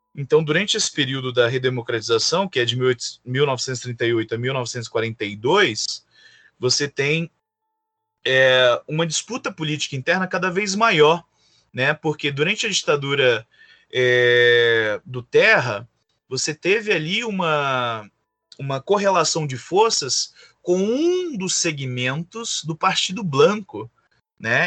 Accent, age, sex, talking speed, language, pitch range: Brazilian, 20-39, male, 105 wpm, Portuguese, 125-185 Hz